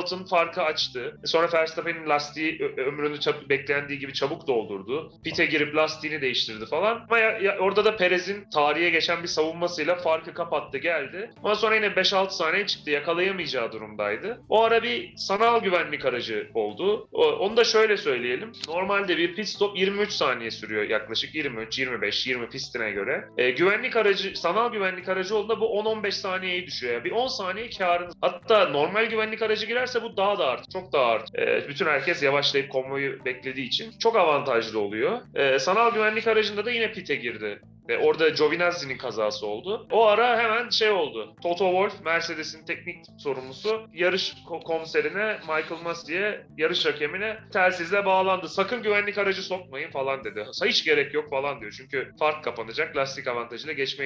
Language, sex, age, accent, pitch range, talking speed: Turkish, male, 30-49, native, 150-215 Hz, 160 wpm